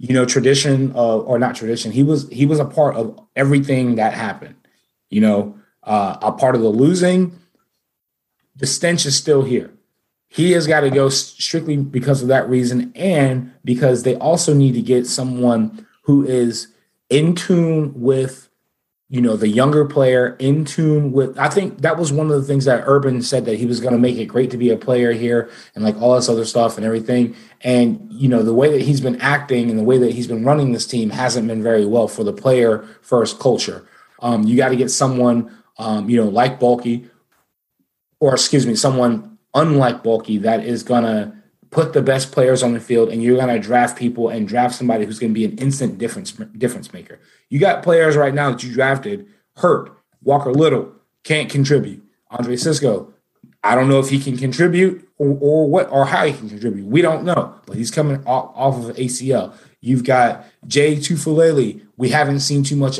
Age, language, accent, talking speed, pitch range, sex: 30-49, English, American, 205 wpm, 120-150 Hz, male